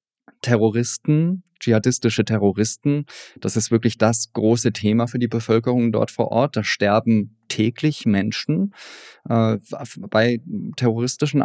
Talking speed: 115 wpm